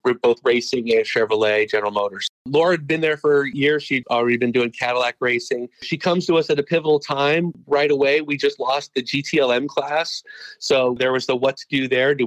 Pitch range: 115-145 Hz